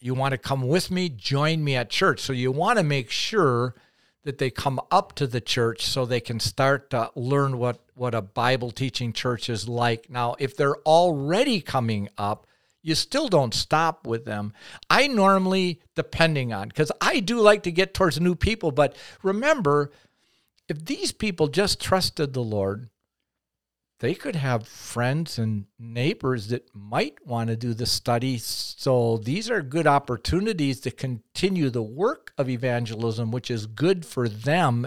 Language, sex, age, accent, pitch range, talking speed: English, male, 50-69, American, 120-175 Hz, 170 wpm